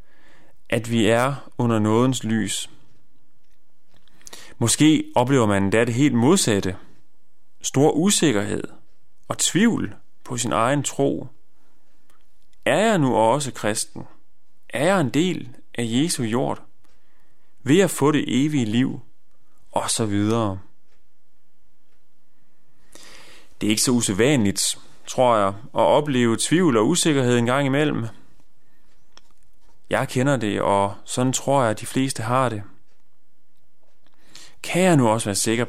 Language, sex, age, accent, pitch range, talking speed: Danish, male, 30-49, native, 110-140 Hz, 125 wpm